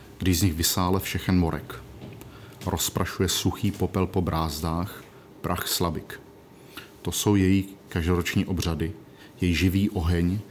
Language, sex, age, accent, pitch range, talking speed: Czech, male, 40-59, native, 90-100 Hz, 120 wpm